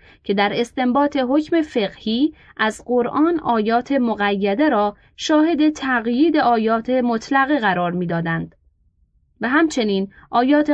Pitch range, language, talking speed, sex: 200-285 Hz, Persian, 105 wpm, female